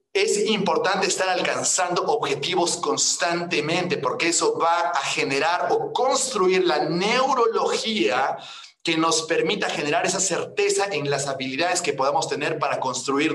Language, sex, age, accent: Spanish, male, 40-59, Mexican